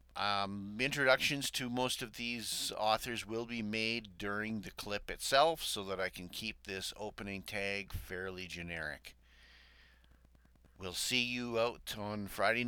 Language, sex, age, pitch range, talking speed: English, male, 50-69, 90-115 Hz, 140 wpm